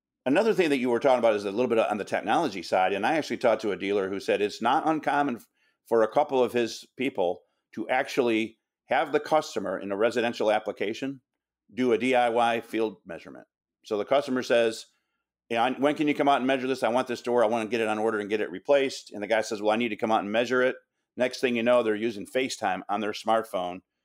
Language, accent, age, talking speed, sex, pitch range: English, American, 50-69, 240 wpm, male, 105-130 Hz